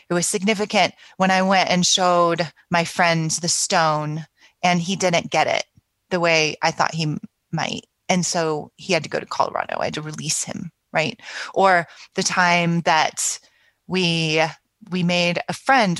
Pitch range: 155-185 Hz